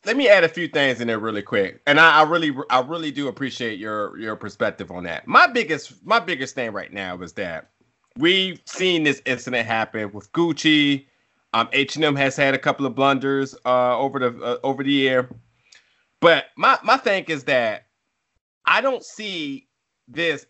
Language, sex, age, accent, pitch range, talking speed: English, male, 30-49, American, 125-165 Hz, 190 wpm